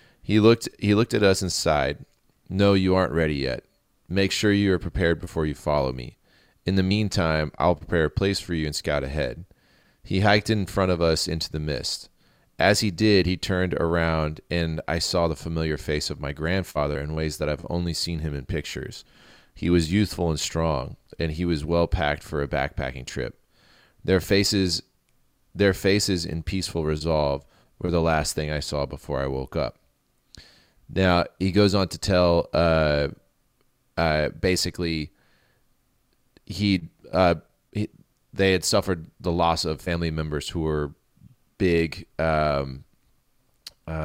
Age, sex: 30-49, male